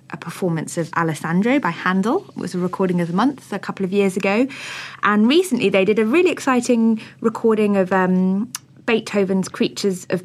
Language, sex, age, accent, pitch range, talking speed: English, female, 20-39, British, 150-205 Hz, 180 wpm